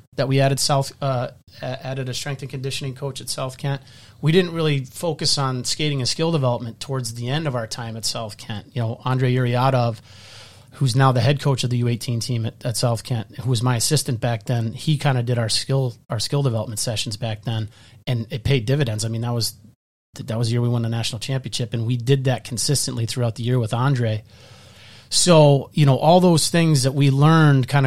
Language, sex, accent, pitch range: English, male, American, 120-135 Hz